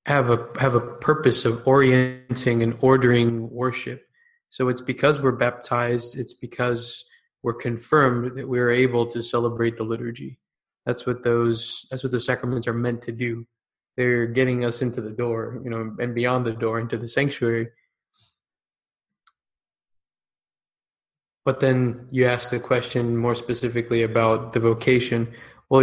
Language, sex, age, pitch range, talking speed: English, male, 20-39, 115-130 Hz, 150 wpm